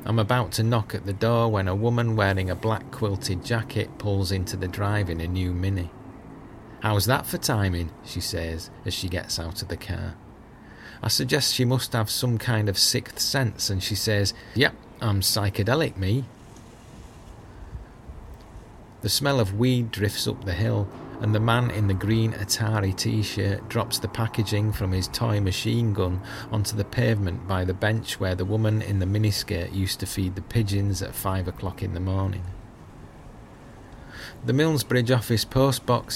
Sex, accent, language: male, British, English